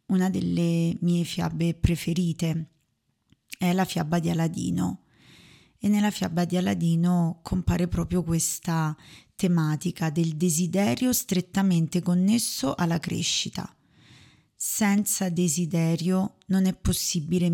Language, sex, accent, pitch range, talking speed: Italian, female, native, 165-190 Hz, 105 wpm